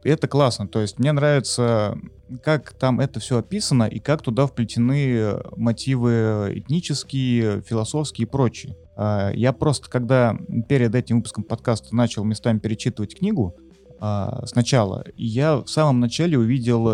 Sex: male